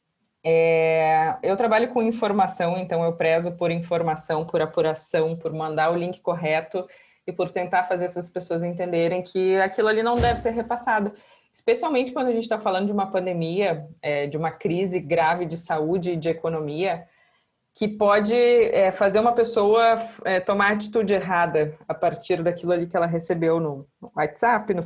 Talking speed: 170 wpm